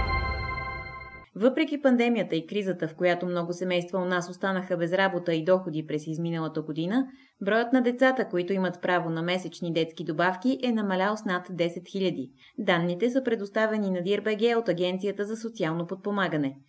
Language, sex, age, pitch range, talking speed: Bulgarian, female, 20-39, 165-220 Hz, 160 wpm